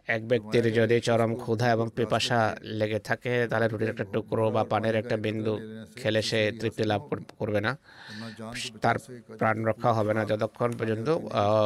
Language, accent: Bengali, native